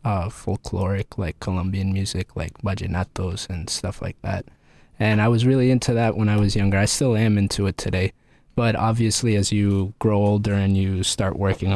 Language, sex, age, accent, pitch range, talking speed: English, male, 20-39, American, 95-110 Hz, 190 wpm